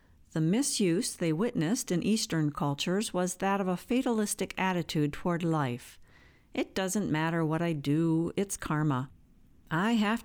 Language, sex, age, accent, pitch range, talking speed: English, female, 50-69, American, 150-205 Hz, 145 wpm